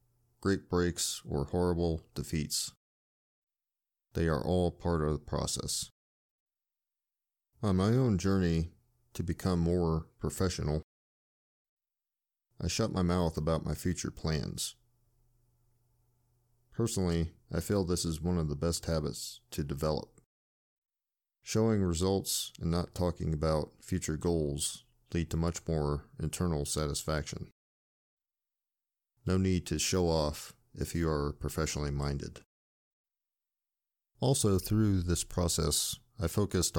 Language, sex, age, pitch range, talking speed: English, male, 40-59, 75-95 Hz, 115 wpm